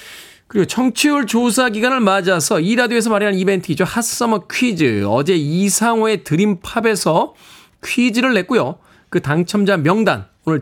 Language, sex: Korean, male